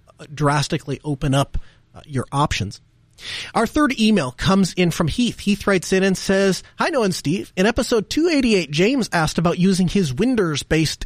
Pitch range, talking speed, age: 140-195 Hz, 170 wpm, 30-49